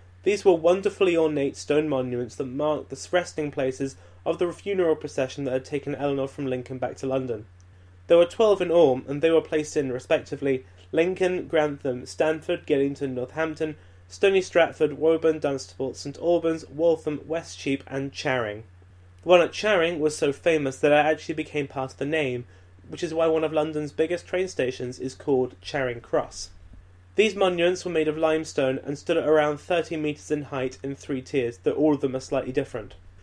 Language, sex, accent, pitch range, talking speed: English, male, British, 130-160 Hz, 185 wpm